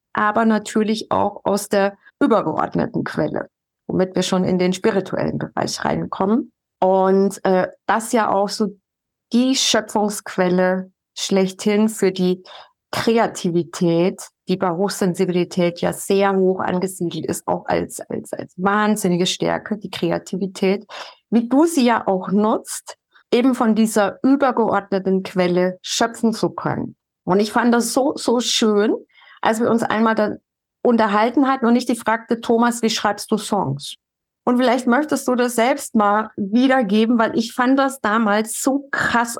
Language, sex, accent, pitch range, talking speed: German, female, German, 190-235 Hz, 145 wpm